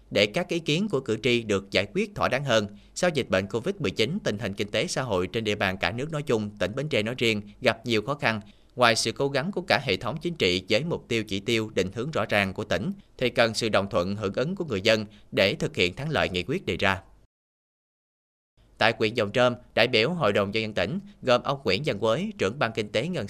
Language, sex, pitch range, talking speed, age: Vietnamese, male, 100-135 Hz, 260 wpm, 30-49